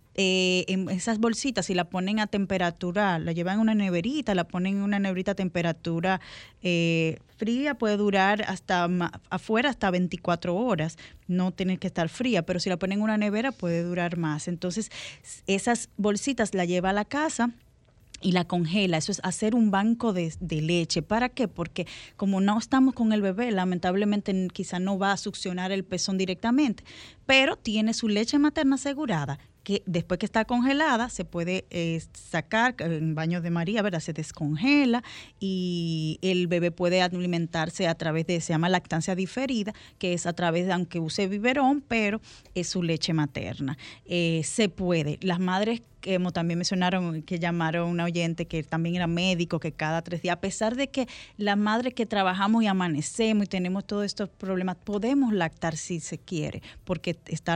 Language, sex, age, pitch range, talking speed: Spanish, female, 10-29, 170-215 Hz, 175 wpm